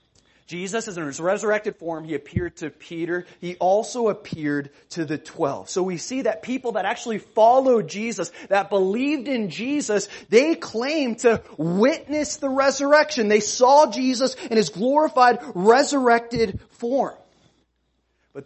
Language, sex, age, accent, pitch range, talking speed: English, male, 30-49, American, 170-240 Hz, 145 wpm